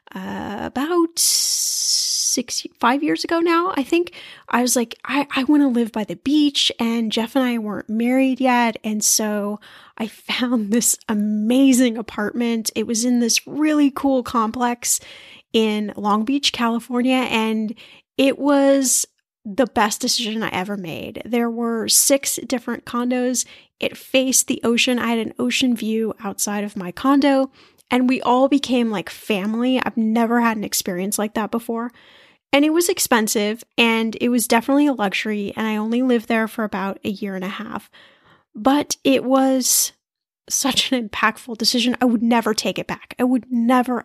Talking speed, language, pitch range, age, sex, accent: 170 wpm, English, 220-265 Hz, 10-29, female, American